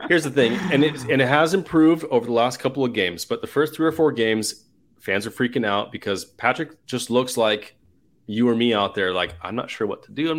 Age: 30-49